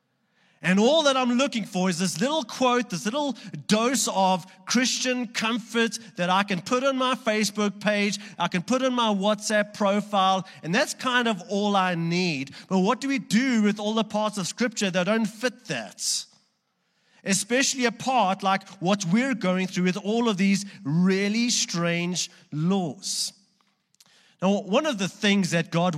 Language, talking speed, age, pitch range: English, 175 wpm, 30-49, 180-225 Hz